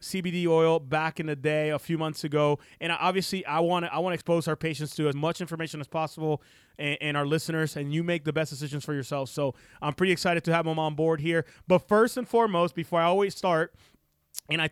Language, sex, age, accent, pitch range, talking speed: English, male, 30-49, American, 150-180 Hz, 235 wpm